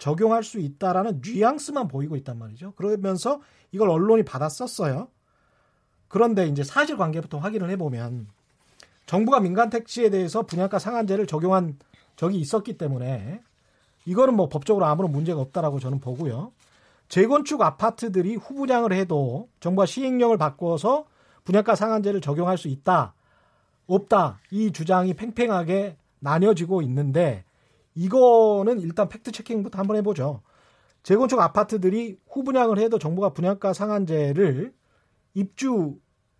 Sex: male